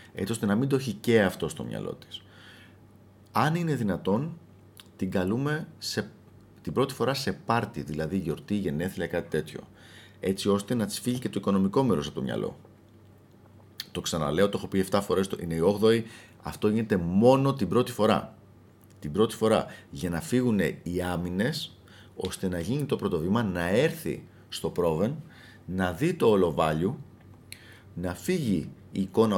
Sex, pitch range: male, 95-120 Hz